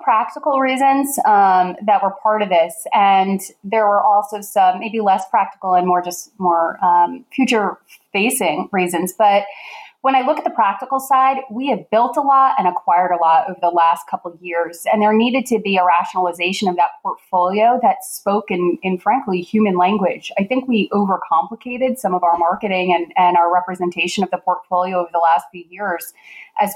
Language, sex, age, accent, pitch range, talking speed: English, female, 30-49, American, 180-225 Hz, 190 wpm